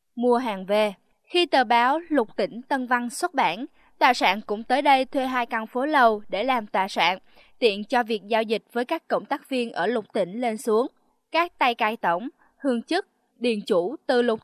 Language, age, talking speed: Vietnamese, 20-39, 210 wpm